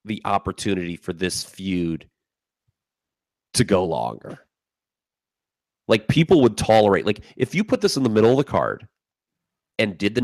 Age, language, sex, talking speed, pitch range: 30-49, English, male, 150 wpm, 95-115 Hz